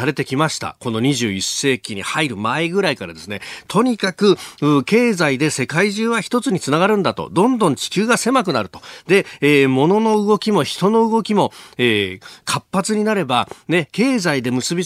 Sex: male